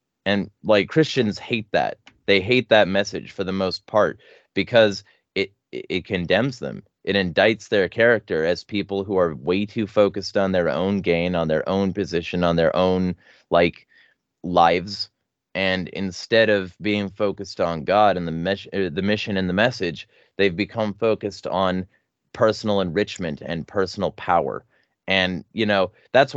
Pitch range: 90-110 Hz